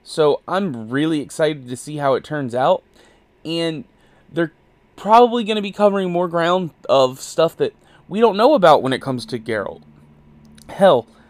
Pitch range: 130-170 Hz